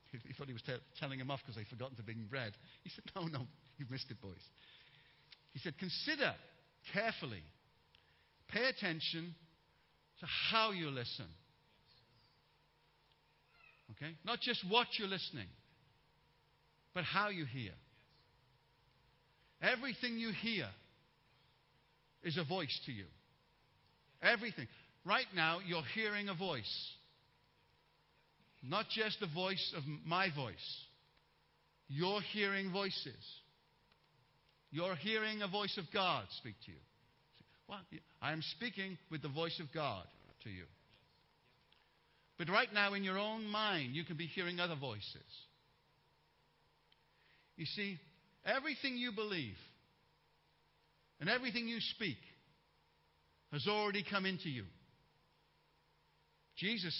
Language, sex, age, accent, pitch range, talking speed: English, male, 50-69, British, 135-195 Hz, 120 wpm